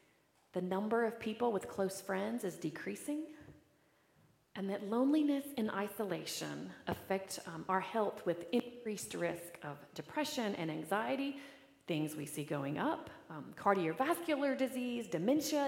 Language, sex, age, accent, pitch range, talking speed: English, female, 40-59, American, 180-260 Hz, 130 wpm